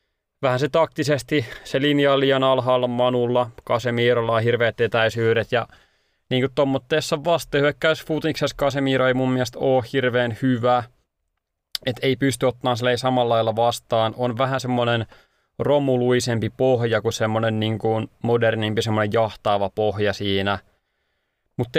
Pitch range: 115-130 Hz